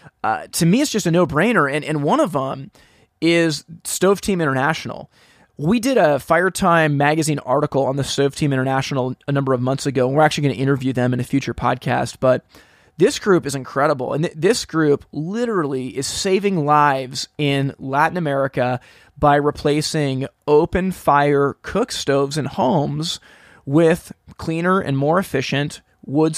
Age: 20-39